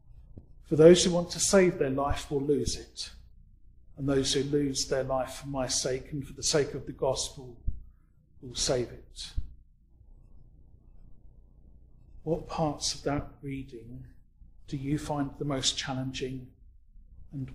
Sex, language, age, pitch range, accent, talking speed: male, English, 40-59, 85-145 Hz, British, 145 wpm